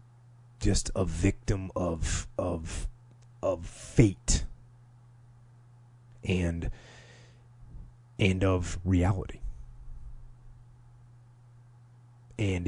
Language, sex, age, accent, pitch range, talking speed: English, male, 30-49, American, 100-120 Hz, 55 wpm